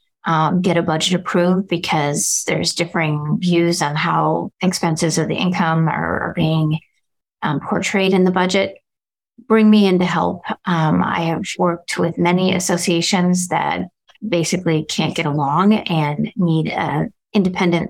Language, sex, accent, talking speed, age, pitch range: English, female, American, 150 wpm, 30-49, 170-215 Hz